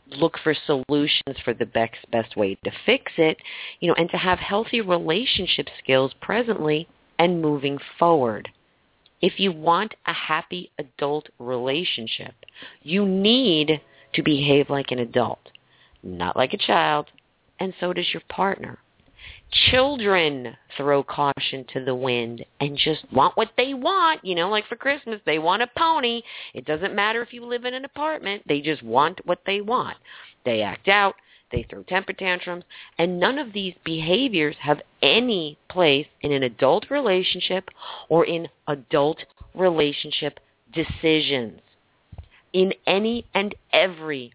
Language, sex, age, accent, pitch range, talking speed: English, female, 40-59, American, 140-195 Hz, 150 wpm